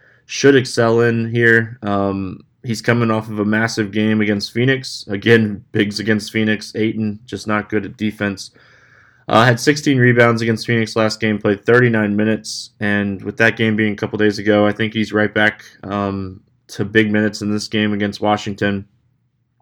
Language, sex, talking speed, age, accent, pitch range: English, male, 175 wpm, 20-39, American, 105-125 Hz